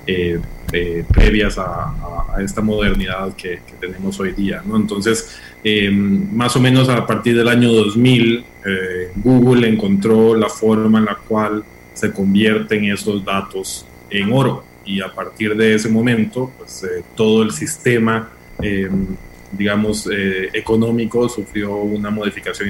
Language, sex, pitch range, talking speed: Spanish, male, 95-110 Hz, 140 wpm